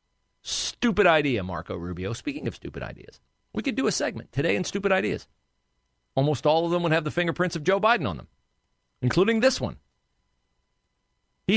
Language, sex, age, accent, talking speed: English, male, 40-59, American, 175 wpm